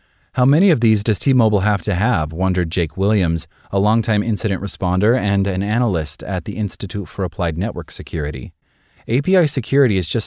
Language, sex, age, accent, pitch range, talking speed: English, male, 30-49, American, 85-105 Hz, 175 wpm